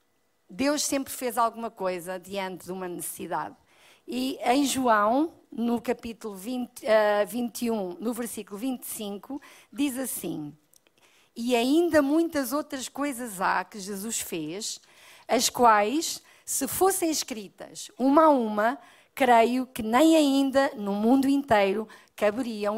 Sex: female